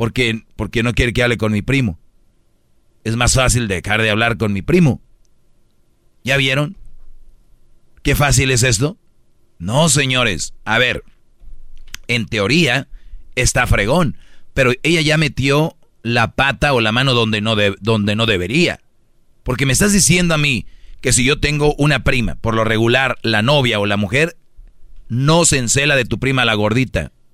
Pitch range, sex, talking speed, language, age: 110-145 Hz, male, 165 wpm, Spanish, 40-59